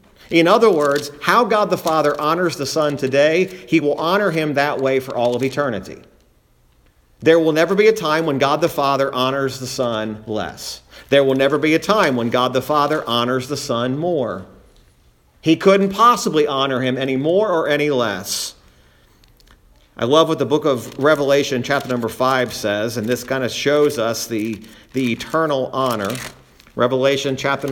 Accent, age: American, 50-69